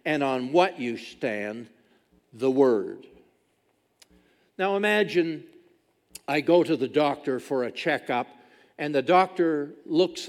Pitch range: 155-220 Hz